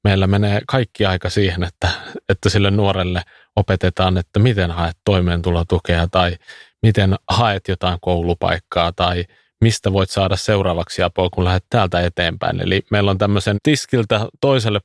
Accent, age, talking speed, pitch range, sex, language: native, 30-49, 140 wpm, 90-110 Hz, male, Finnish